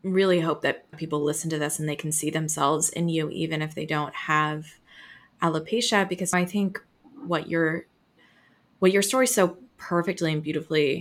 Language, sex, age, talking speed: English, female, 20-39, 175 wpm